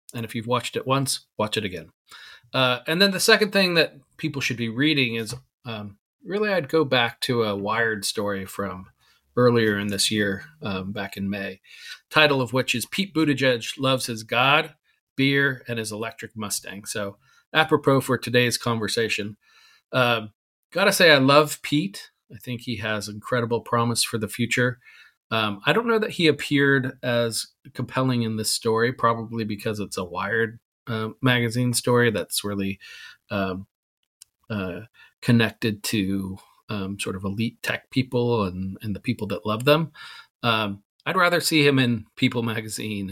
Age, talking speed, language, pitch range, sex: 40-59, 165 wpm, English, 105-130 Hz, male